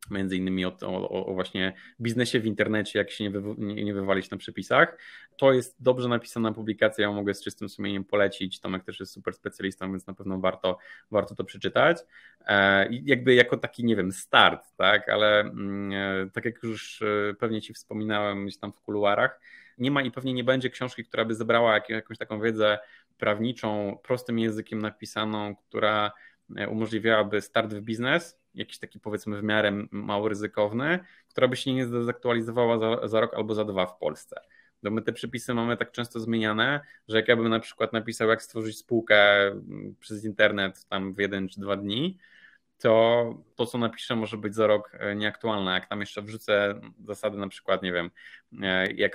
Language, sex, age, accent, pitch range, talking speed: Polish, male, 20-39, native, 100-120 Hz, 180 wpm